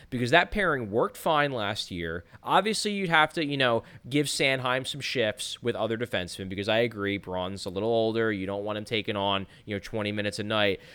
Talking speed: 215 wpm